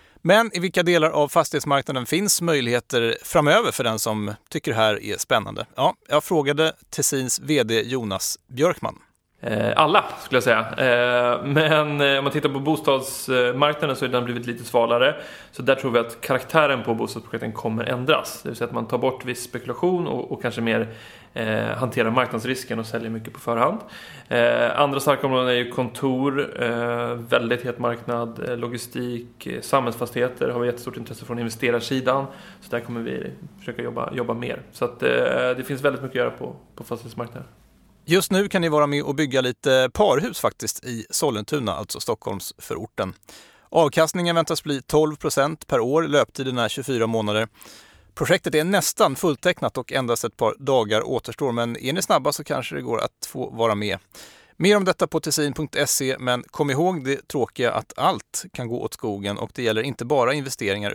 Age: 30-49